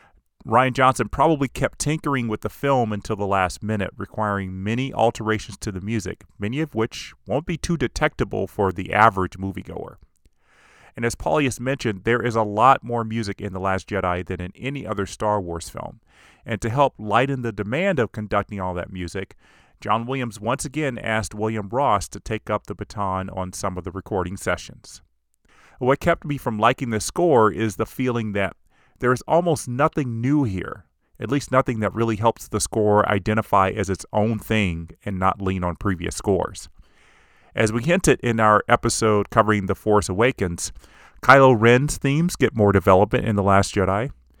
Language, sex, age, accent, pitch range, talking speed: English, male, 30-49, American, 100-125 Hz, 180 wpm